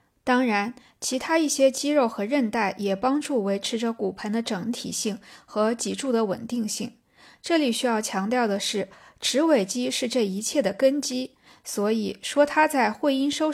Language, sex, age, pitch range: Chinese, female, 20-39, 210-275 Hz